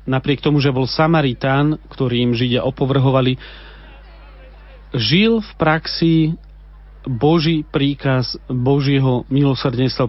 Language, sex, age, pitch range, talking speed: Slovak, male, 40-59, 130-155 Hz, 90 wpm